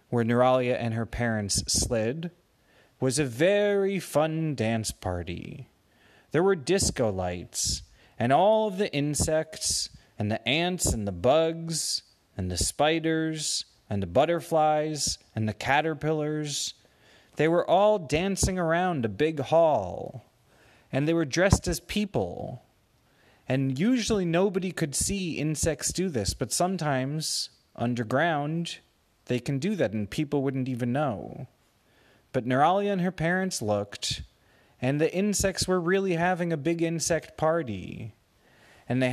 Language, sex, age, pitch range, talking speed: English, male, 30-49, 115-165 Hz, 135 wpm